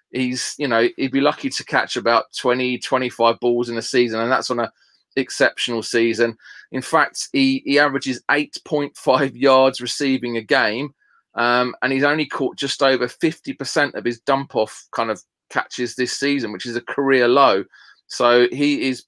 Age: 30-49